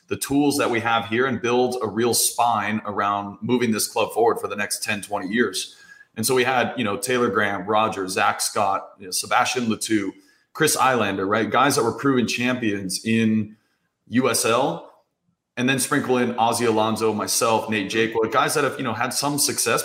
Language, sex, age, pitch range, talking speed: English, male, 20-39, 110-140 Hz, 185 wpm